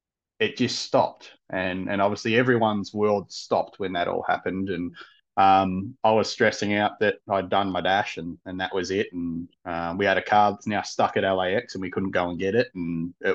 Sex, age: male, 30-49